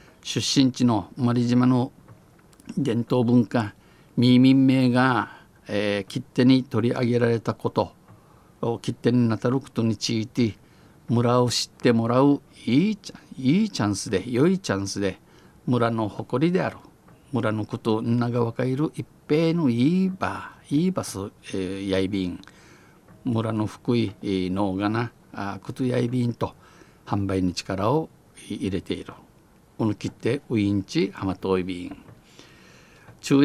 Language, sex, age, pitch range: Japanese, male, 50-69, 100-130 Hz